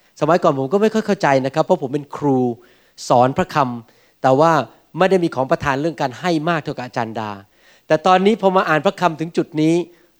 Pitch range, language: 145-185 Hz, Thai